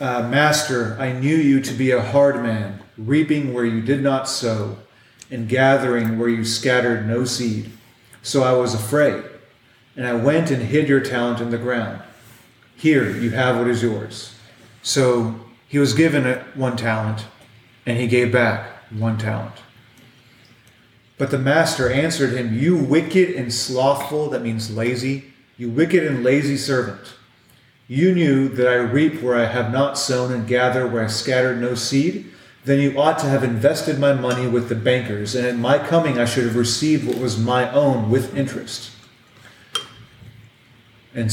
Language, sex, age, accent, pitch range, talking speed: English, male, 30-49, American, 115-135 Hz, 165 wpm